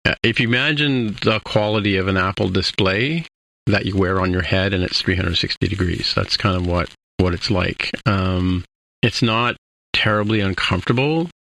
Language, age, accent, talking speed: English, 40-59, American, 160 wpm